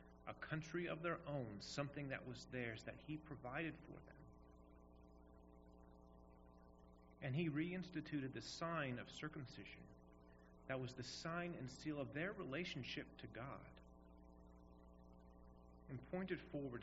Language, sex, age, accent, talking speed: English, male, 30-49, American, 125 wpm